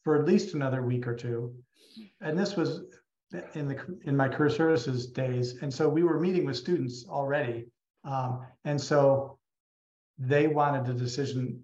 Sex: male